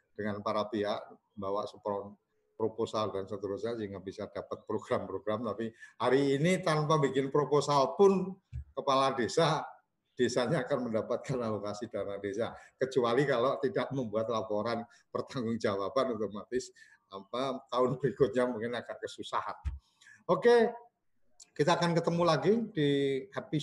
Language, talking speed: Indonesian, 115 wpm